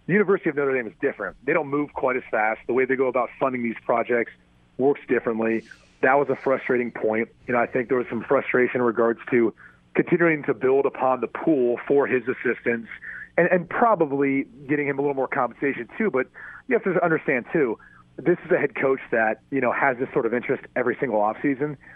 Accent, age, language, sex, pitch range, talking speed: American, 40-59, English, male, 120-140 Hz, 220 wpm